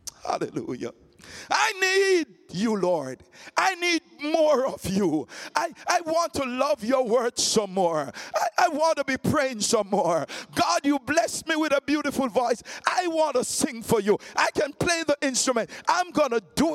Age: 60-79